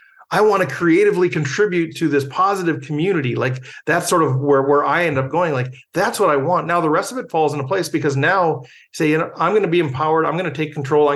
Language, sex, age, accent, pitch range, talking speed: English, male, 40-59, American, 145-195 Hz, 260 wpm